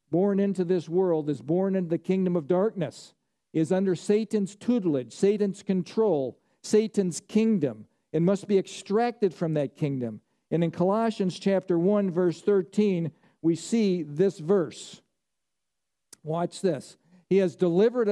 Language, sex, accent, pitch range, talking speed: English, male, American, 165-200 Hz, 140 wpm